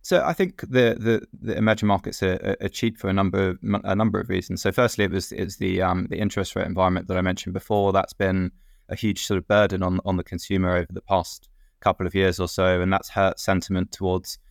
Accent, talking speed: British, 240 wpm